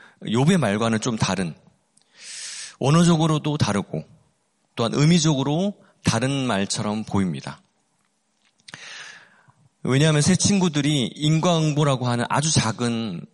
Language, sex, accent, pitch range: Korean, male, native, 120-165 Hz